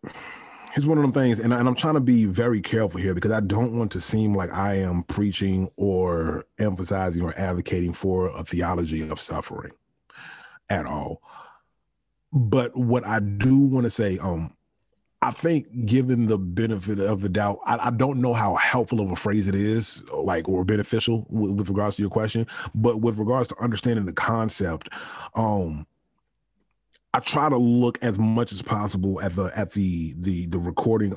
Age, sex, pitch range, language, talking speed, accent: 30-49, male, 95-120 Hz, English, 185 wpm, American